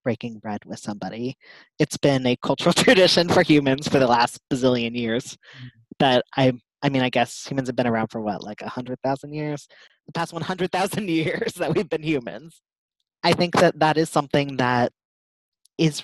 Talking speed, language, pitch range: 185 wpm, English, 120-150 Hz